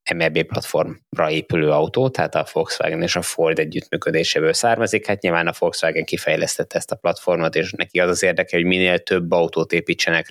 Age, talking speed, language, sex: 20-39, 175 wpm, Hungarian, male